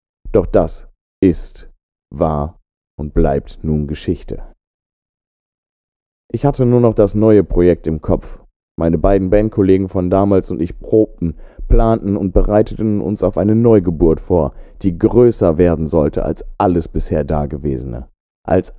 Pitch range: 80-105 Hz